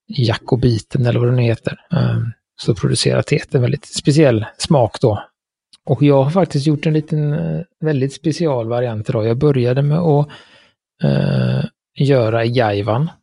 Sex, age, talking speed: male, 30-49, 145 wpm